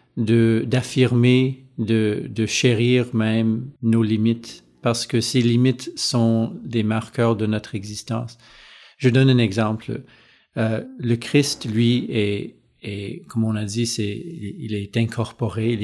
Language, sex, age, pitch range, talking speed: French, male, 50-69, 110-125 Hz, 140 wpm